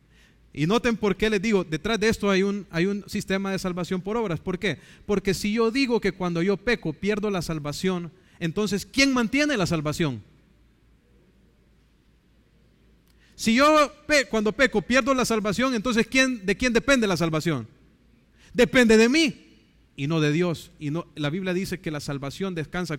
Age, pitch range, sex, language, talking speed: 40-59, 160-215 Hz, male, English, 175 wpm